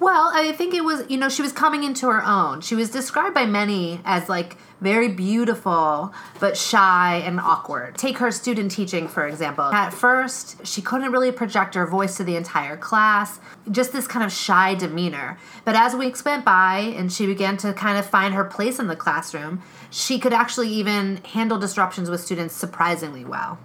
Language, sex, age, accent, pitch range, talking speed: English, female, 30-49, American, 180-235 Hz, 195 wpm